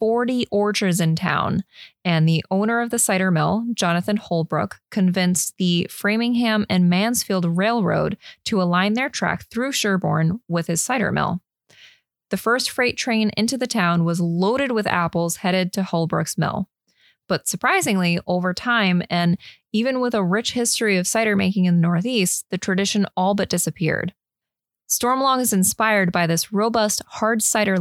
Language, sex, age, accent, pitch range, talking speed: English, female, 20-39, American, 175-220 Hz, 160 wpm